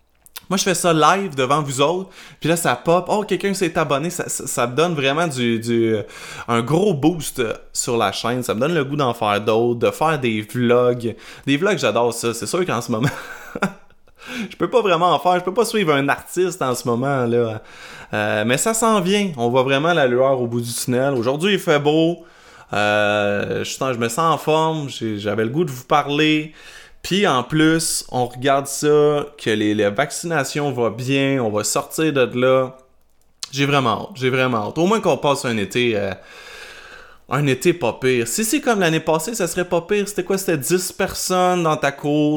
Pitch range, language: 120-175 Hz, French